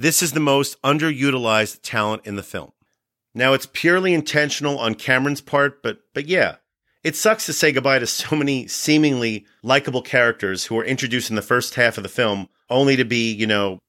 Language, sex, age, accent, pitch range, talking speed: English, male, 40-59, American, 115-145 Hz, 195 wpm